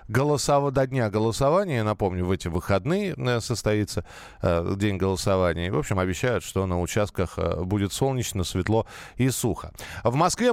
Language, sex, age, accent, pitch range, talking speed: Russian, male, 20-39, native, 95-140 Hz, 150 wpm